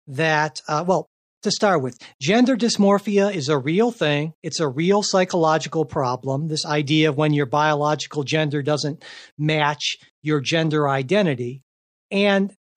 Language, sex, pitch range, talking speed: English, male, 155-195 Hz, 140 wpm